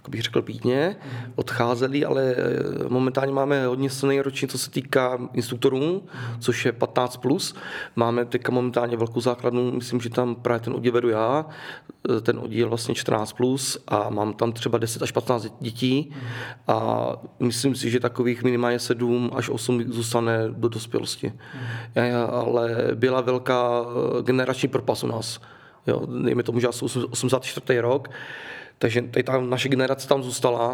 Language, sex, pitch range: Czech, male, 120-135 Hz